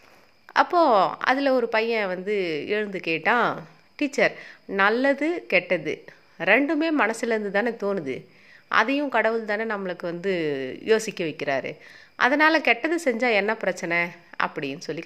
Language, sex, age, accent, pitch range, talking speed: Tamil, female, 30-49, native, 180-265 Hz, 110 wpm